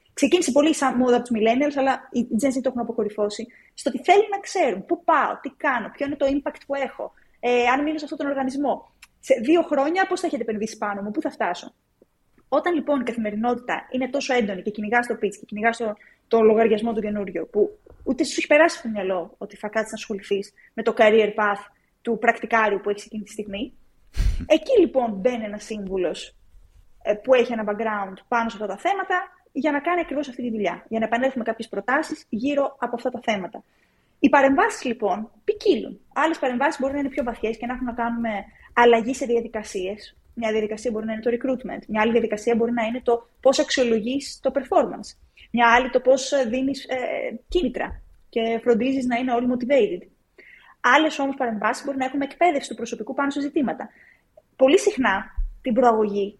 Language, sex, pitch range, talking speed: Greek, female, 220-280 Hz, 200 wpm